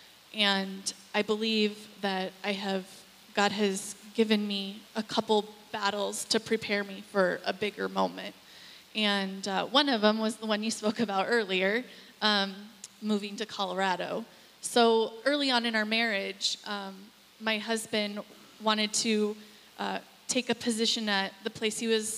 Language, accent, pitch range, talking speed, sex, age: English, American, 210-235 Hz, 150 wpm, female, 20-39